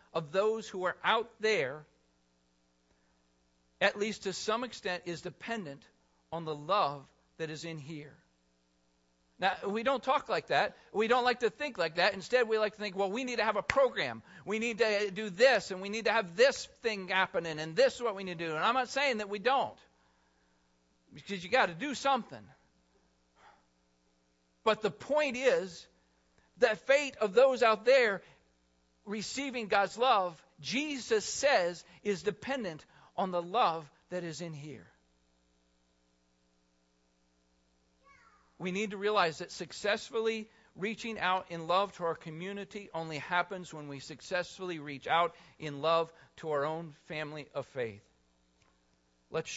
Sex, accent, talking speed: male, American, 160 wpm